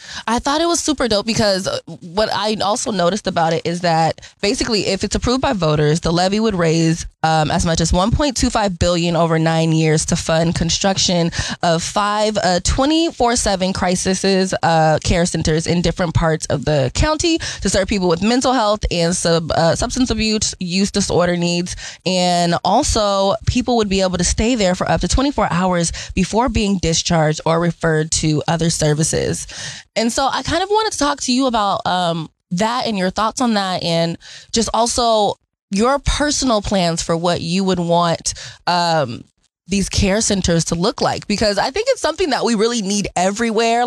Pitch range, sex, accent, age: 170-220 Hz, female, American, 20-39